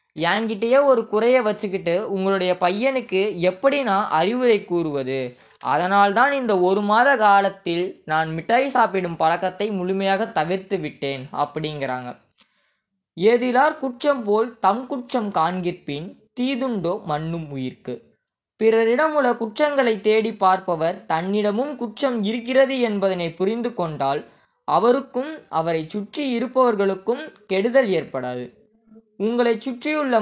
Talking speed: 95 wpm